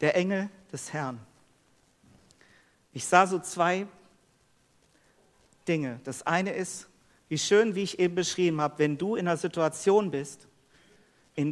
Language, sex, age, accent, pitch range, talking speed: German, male, 50-69, German, 155-205 Hz, 135 wpm